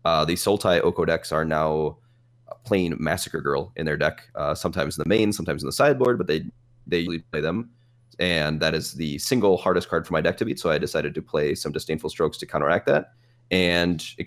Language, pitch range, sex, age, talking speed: English, 80-110 Hz, male, 30-49, 225 wpm